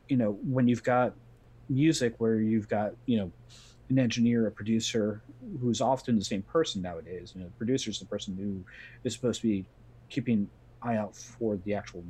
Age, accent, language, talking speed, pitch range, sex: 40-59, American, English, 200 wpm, 100-120 Hz, male